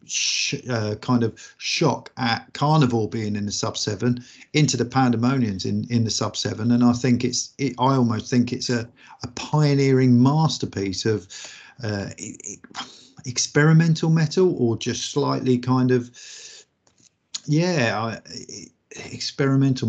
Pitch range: 110-130 Hz